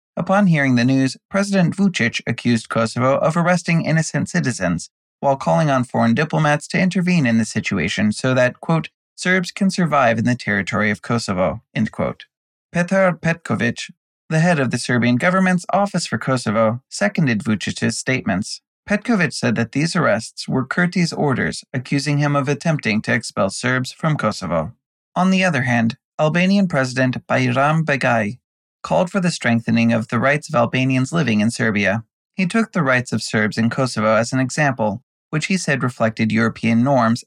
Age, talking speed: 30-49, 165 wpm